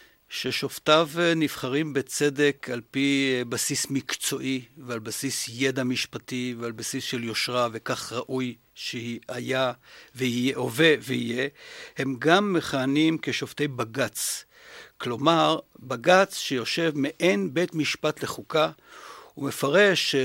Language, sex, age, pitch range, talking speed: Hebrew, male, 60-79, 130-170 Hz, 105 wpm